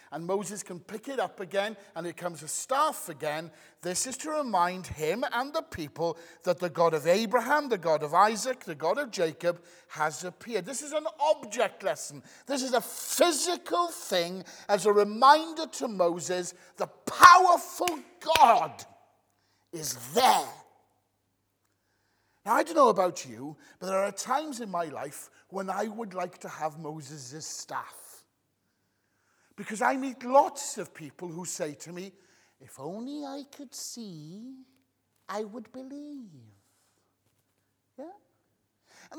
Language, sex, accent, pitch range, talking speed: English, male, British, 170-270 Hz, 150 wpm